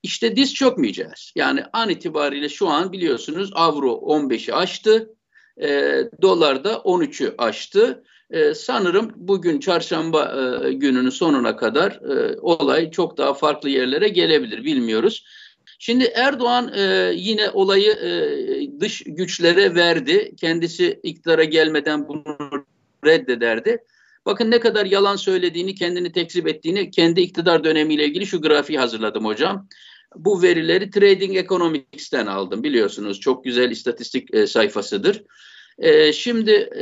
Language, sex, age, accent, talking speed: Turkish, male, 50-69, native, 120 wpm